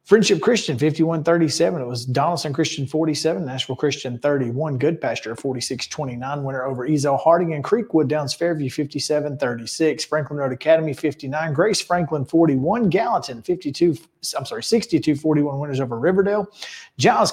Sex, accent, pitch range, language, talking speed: male, American, 140-170 Hz, English, 150 wpm